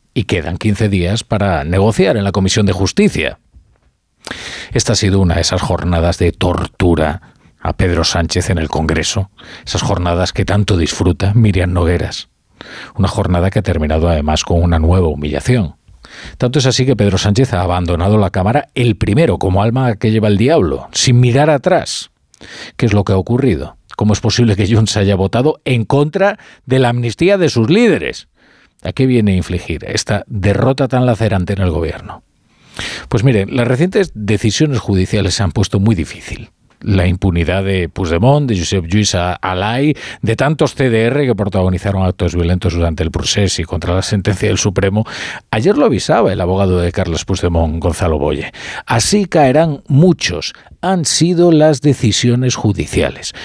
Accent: Spanish